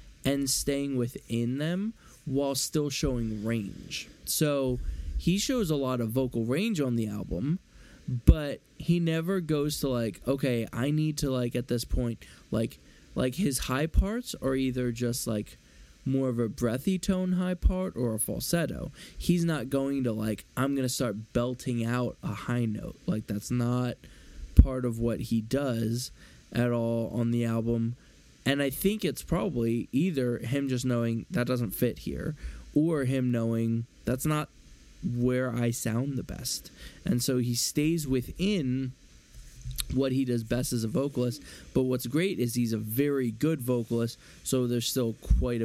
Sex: male